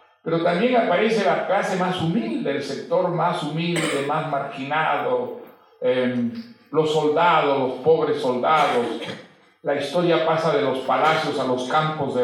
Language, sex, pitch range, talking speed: Russian, male, 145-195 Hz, 140 wpm